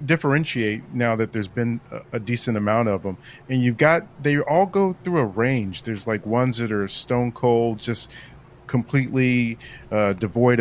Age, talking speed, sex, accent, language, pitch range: 40-59, 170 wpm, male, American, English, 110-135 Hz